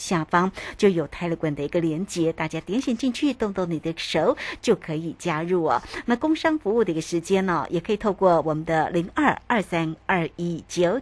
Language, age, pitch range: Chinese, 60-79, 165-220 Hz